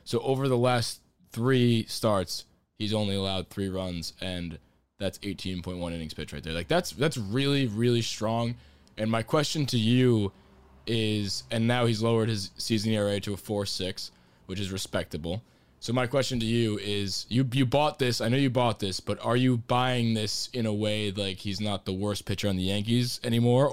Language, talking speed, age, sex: English, 190 wpm, 20-39, male